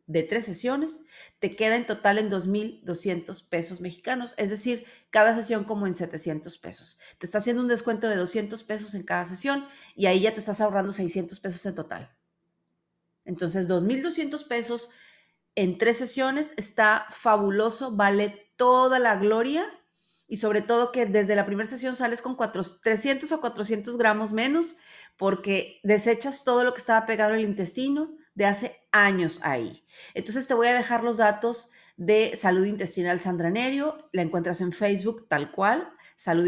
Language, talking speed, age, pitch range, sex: Spanish, 165 wpm, 40-59, 185-240 Hz, female